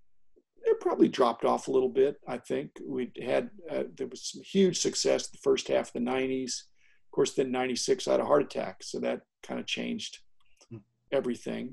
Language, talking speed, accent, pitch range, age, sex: English, 195 wpm, American, 125-195 Hz, 50-69, male